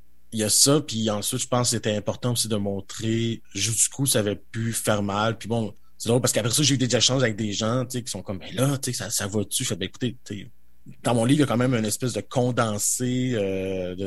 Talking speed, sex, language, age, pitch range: 285 wpm, male, French, 30-49, 100-115 Hz